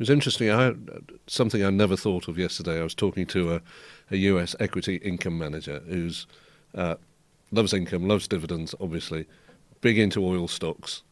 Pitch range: 85-105 Hz